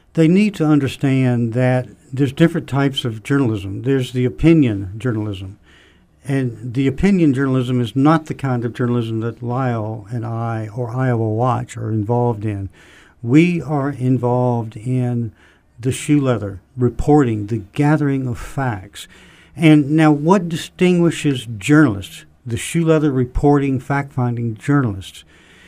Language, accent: English, American